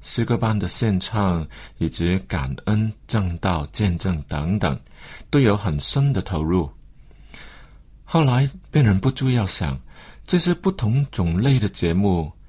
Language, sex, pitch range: Chinese, male, 90-125 Hz